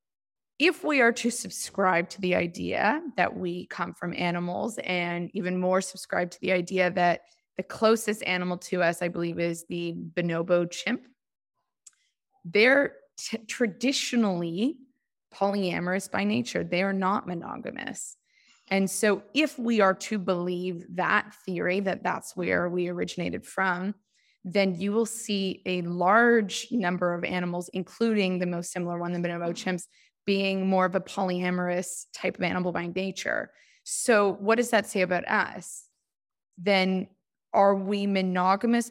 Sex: female